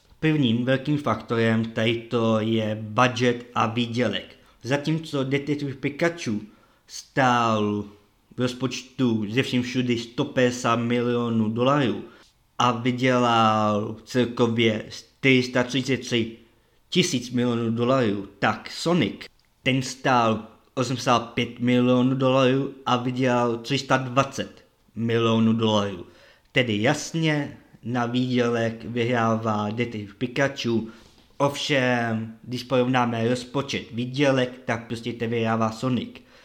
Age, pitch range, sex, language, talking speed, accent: 20-39, 115-130 Hz, male, Czech, 90 wpm, native